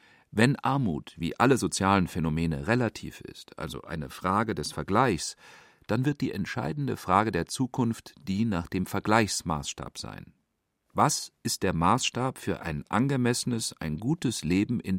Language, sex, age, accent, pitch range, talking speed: German, male, 40-59, German, 90-120 Hz, 145 wpm